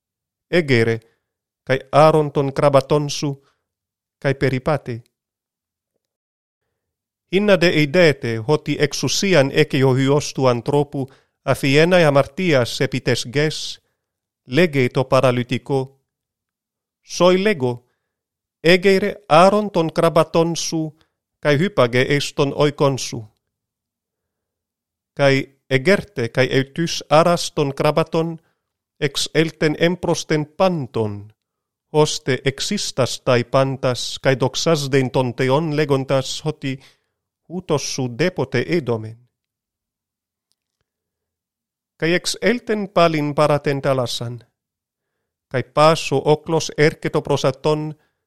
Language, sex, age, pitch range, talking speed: Greek, male, 40-59, 125-160 Hz, 85 wpm